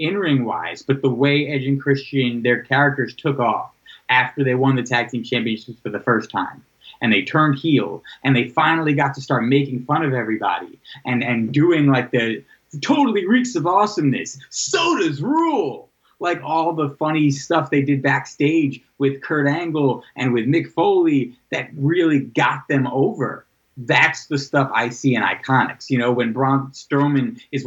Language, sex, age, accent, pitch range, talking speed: English, male, 30-49, American, 125-150 Hz, 180 wpm